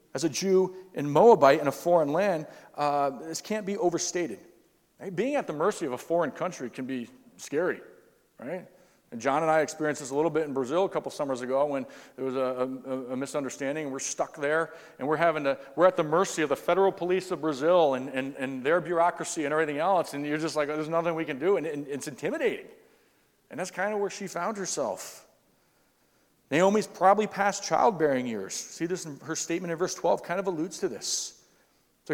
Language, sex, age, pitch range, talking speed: English, male, 40-59, 150-195 Hz, 215 wpm